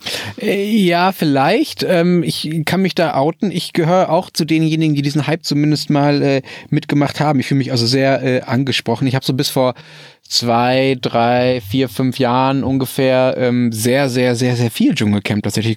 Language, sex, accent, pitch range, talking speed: German, male, German, 115-150 Hz, 170 wpm